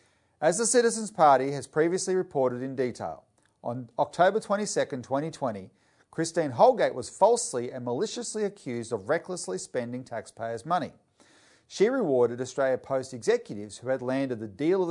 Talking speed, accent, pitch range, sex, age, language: 145 wpm, Australian, 120-190 Hz, male, 40-59, English